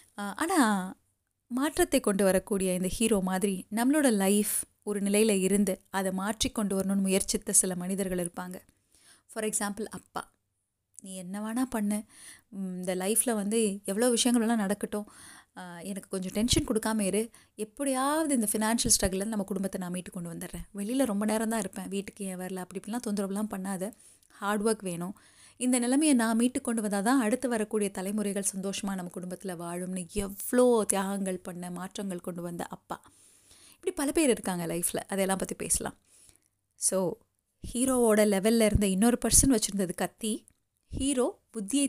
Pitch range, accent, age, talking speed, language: 190-230 Hz, native, 20-39, 145 wpm, Tamil